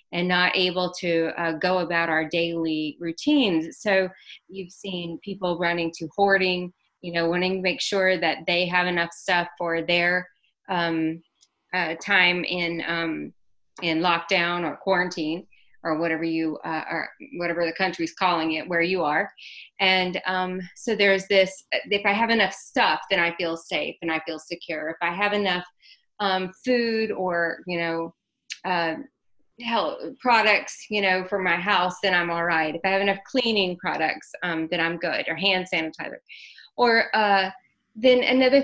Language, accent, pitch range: English, American, 170-205 Hz